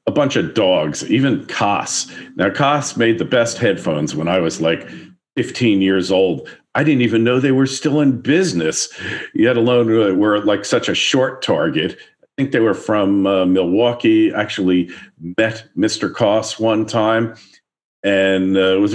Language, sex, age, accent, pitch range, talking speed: English, male, 50-69, American, 95-120 Hz, 170 wpm